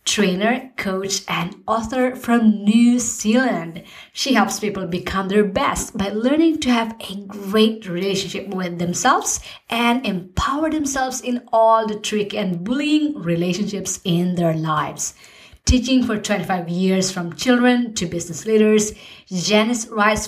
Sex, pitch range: female, 190-245 Hz